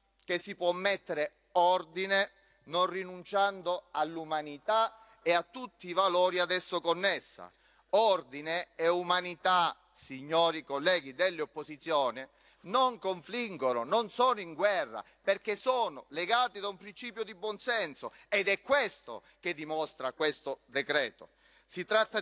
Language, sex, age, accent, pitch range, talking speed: Italian, male, 30-49, native, 165-205 Hz, 120 wpm